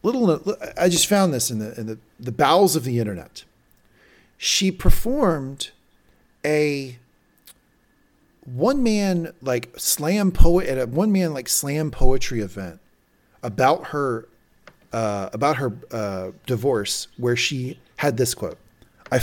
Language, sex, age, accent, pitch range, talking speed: English, male, 40-59, American, 105-140 Hz, 135 wpm